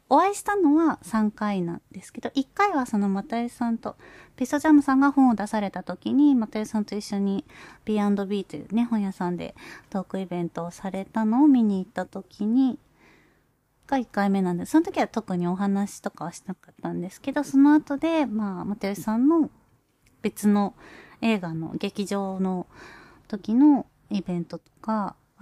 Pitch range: 185-240 Hz